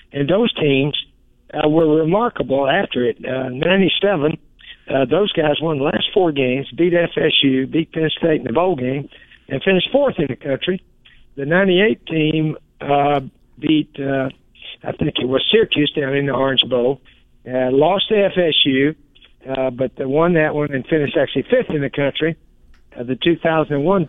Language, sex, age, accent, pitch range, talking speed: English, male, 60-79, American, 135-165 Hz, 170 wpm